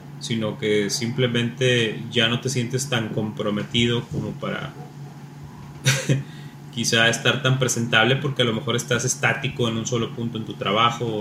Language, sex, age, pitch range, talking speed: Spanish, male, 30-49, 110-140 Hz, 155 wpm